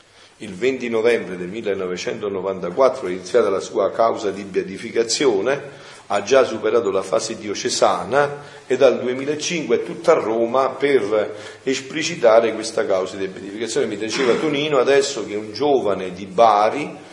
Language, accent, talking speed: Italian, native, 140 wpm